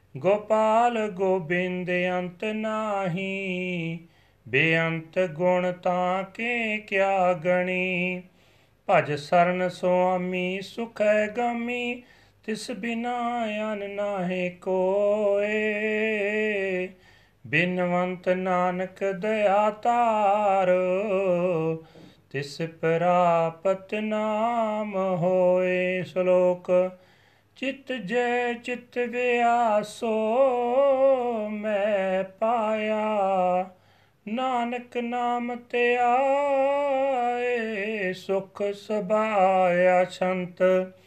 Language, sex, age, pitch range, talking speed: Punjabi, male, 40-59, 180-220 Hz, 60 wpm